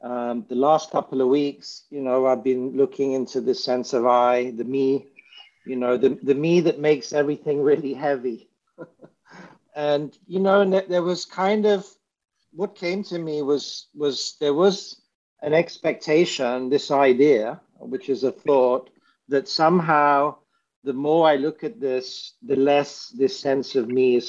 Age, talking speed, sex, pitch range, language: 60-79, 165 wpm, male, 130-165 Hz, English